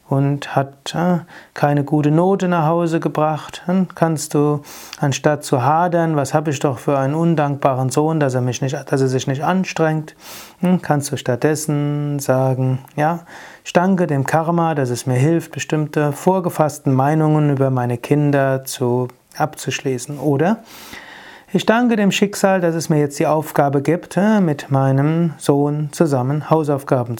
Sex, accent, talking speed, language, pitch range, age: male, German, 150 wpm, German, 135-170 Hz, 30-49